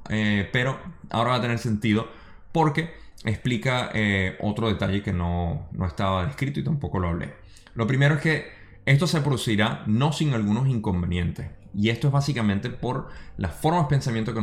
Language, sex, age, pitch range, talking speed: Spanish, male, 20-39, 95-120 Hz, 175 wpm